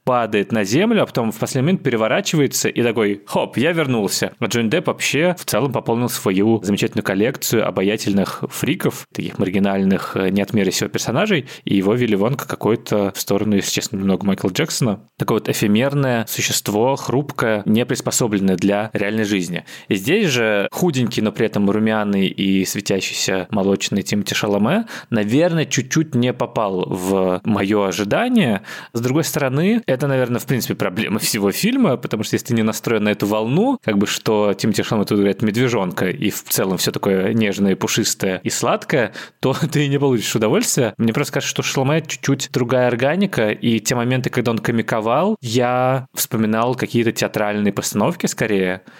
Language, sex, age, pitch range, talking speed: Russian, male, 20-39, 100-130 Hz, 165 wpm